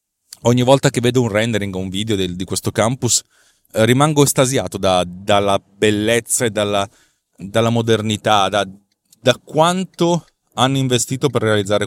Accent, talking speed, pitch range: native, 145 wpm, 100-120 Hz